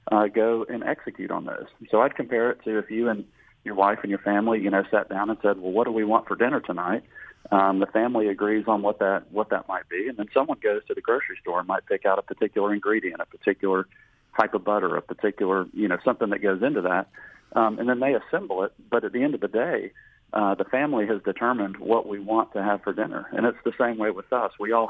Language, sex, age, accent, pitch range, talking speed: English, male, 40-59, American, 100-115 Hz, 260 wpm